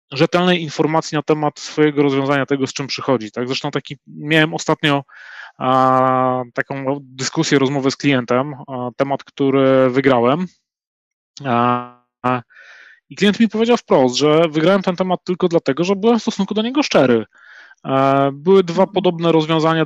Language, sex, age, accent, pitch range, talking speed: Polish, male, 20-39, native, 130-155 Hz, 150 wpm